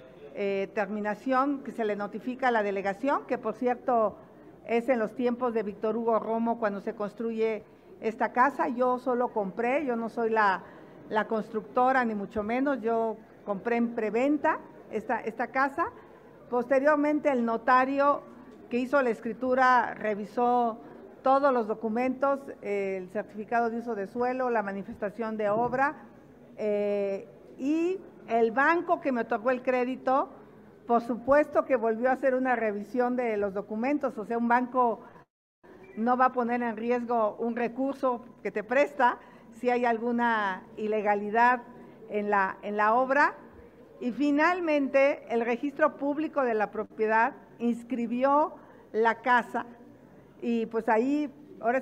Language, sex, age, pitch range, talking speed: Spanish, female, 50-69, 220-260 Hz, 145 wpm